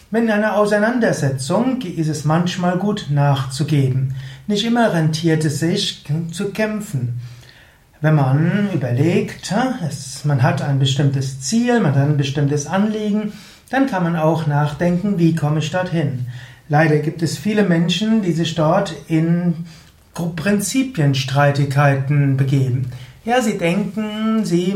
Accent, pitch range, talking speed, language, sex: German, 145-195 Hz, 125 wpm, German, male